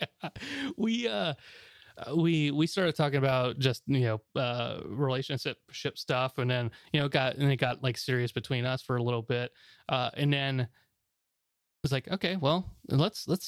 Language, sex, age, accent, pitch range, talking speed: English, male, 20-39, American, 120-155 Hz, 180 wpm